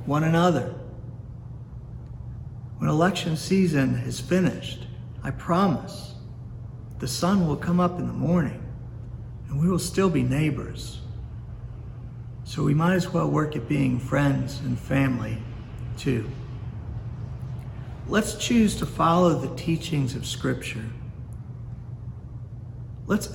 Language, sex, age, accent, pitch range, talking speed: English, male, 50-69, American, 115-140 Hz, 115 wpm